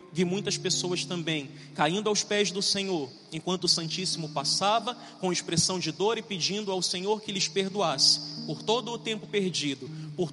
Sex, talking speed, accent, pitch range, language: male, 175 wpm, Brazilian, 180-220 Hz, Portuguese